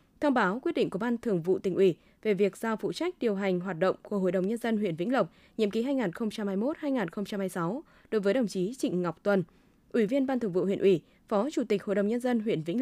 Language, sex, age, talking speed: Vietnamese, female, 20-39, 250 wpm